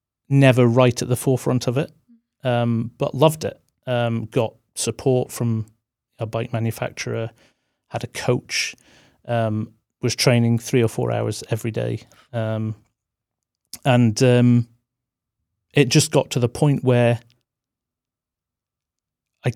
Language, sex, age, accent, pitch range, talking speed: English, male, 30-49, British, 110-125 Hz, 125 wpm